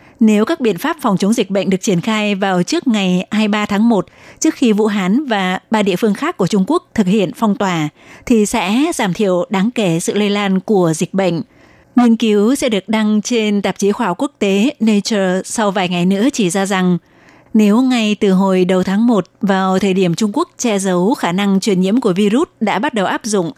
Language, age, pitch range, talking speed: Vietnamese, 20-39, 190-225 Hz, 230 wpm